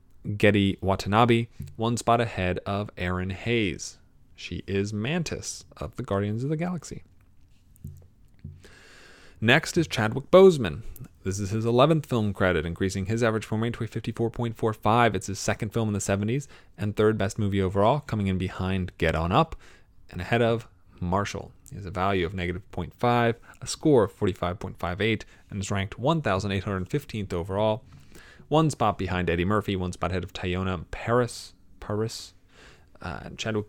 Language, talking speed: English, 150 wpm